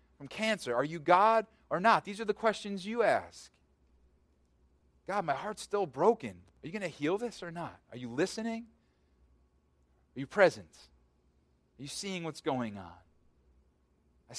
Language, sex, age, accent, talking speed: English, male, 30-49, American, 165 wpm